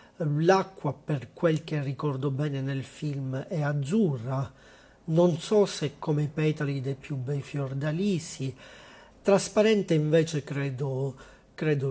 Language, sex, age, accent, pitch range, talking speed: Italian, male, 40-59, native, 135-160 Hz, 120 wpm